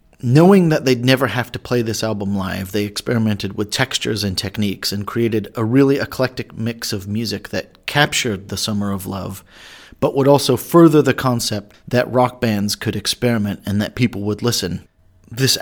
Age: 30-49